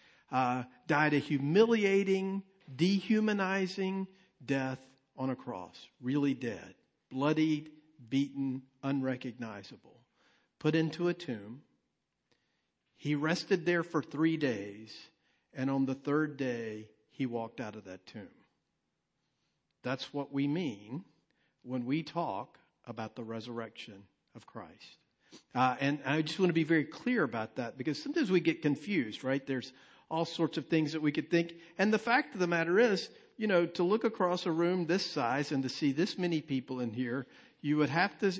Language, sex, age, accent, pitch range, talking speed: English, male, 50-69, American, 135-175 Hz, 160 wpm